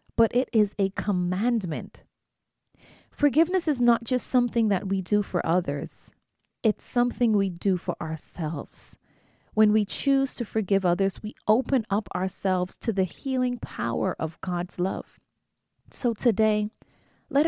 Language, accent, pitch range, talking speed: English, American, 175-230 Hz, 140 wpm